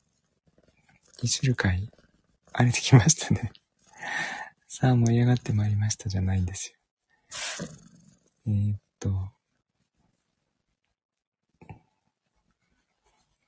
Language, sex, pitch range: Japanese, male, 100-125 Hz